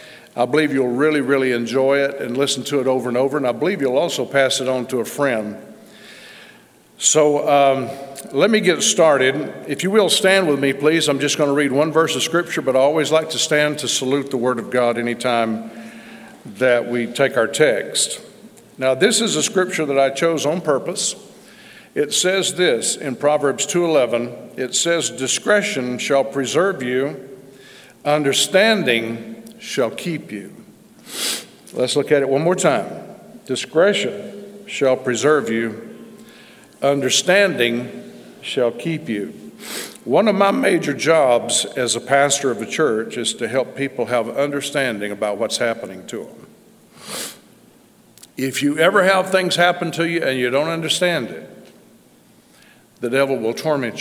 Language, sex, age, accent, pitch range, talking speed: English, male, 50-69, American, 130-185 Hz, 160 wpm